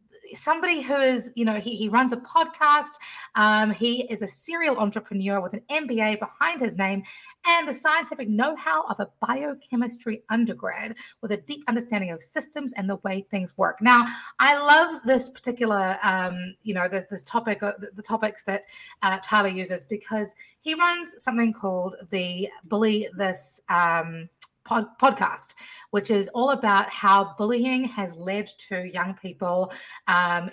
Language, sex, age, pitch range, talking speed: English, female, 30-49, 185-245 Hz, 160 wpm